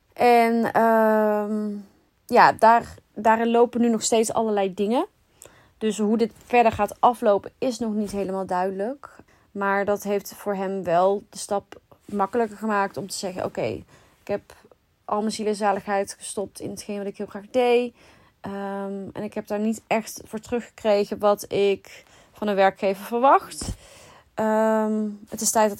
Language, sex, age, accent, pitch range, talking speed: Dutch, female, 20-39, Dutch, 200-230 Hz, 155 wpm